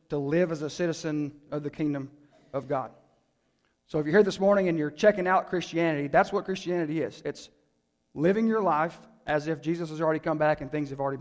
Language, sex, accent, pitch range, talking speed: English, male, American, 140-175 Hz, 215 wpm